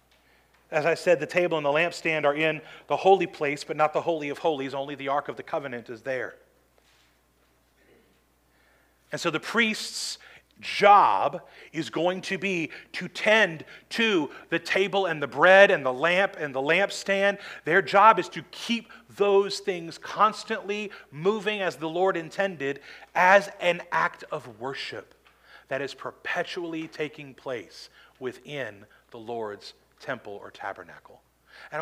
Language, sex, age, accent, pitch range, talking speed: English, male, 40-59, American, 145-195 Hz, 150 wpm